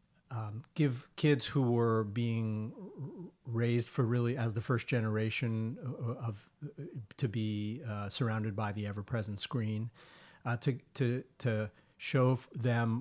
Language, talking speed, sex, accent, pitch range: English, 135 wpm, male, American, 110-125 Hz